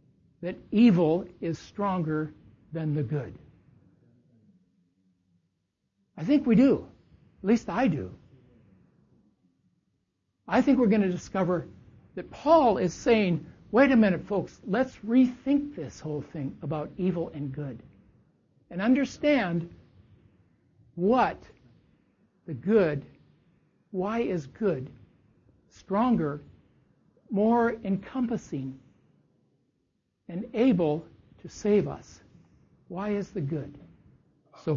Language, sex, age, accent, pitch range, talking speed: English, male, 60-79, American, 145-210 Hz, 100 wpm